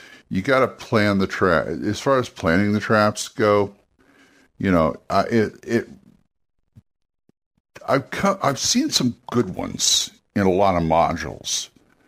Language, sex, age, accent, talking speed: English, male, 60-79, American, 150 wpm